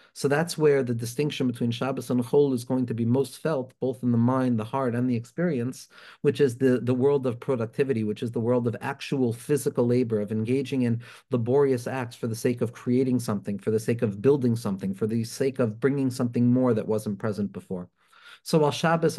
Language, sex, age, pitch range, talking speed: English, male, 40-59, 115-135 Hz, 220 wpm